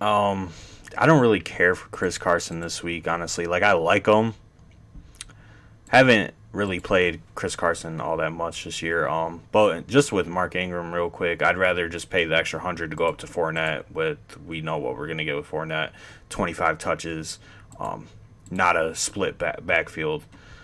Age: 20-39